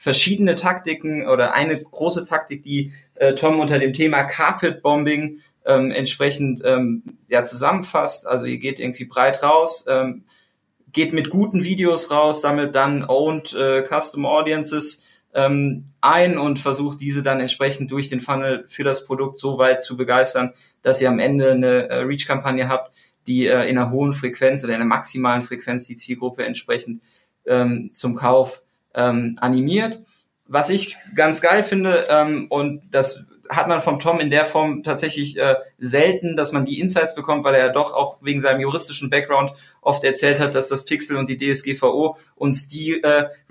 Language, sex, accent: German, male, German